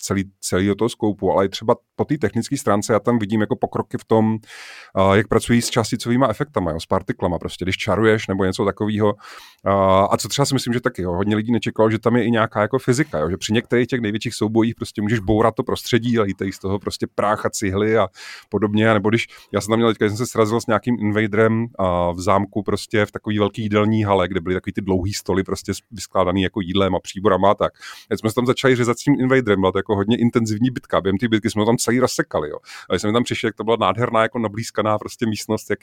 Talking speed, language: 235 wpm, Czech